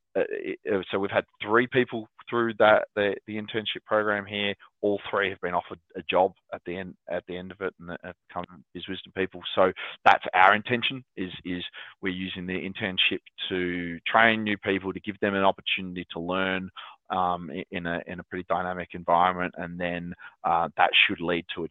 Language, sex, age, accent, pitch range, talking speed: English, male, 20-39, Australian, 90-115 Hz, 195 wpm